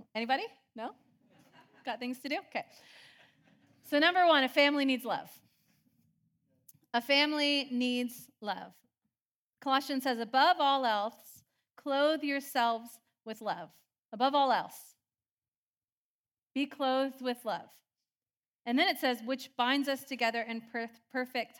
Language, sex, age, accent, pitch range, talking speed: English, female, 30-49, American, 225-285 Hz, 120 wpm